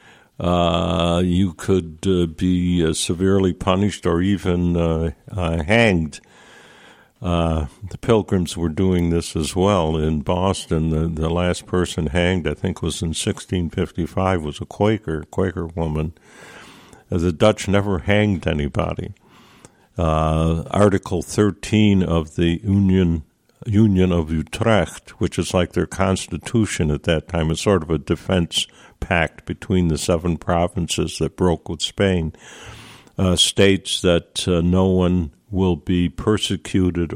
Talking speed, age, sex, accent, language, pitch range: 135 wpm, 60-79, male, American, English, 80-95 Hz